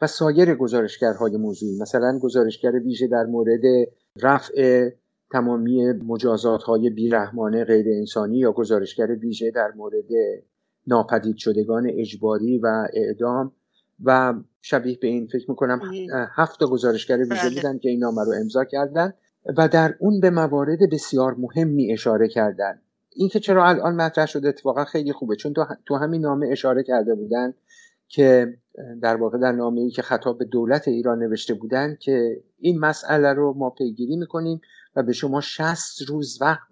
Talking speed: 150 wpm